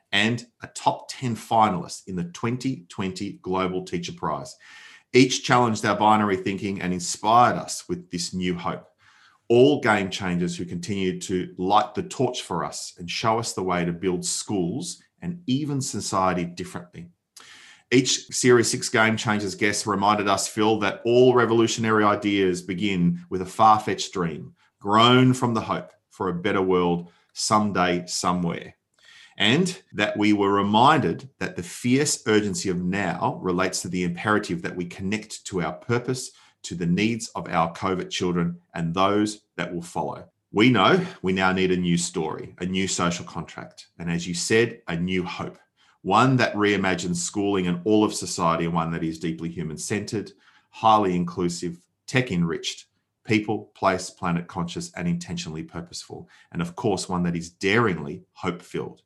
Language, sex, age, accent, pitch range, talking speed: English, male, 30-49, Australian, 90-110 Hz, 160 wpm